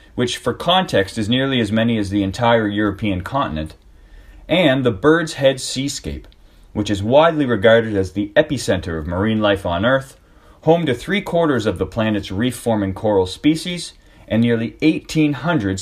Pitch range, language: 95-135 Hz, English